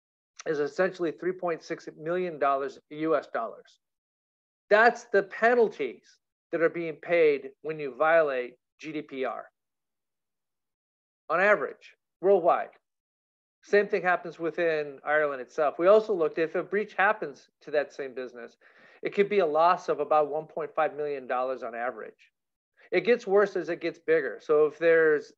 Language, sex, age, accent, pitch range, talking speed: English, male, 50-69, American, 145-210 Hz, 135 wpm